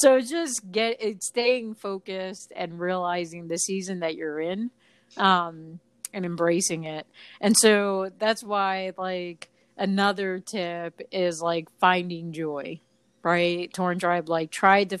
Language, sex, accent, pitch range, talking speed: English, female, American, 165-195 Hz, 135 wpm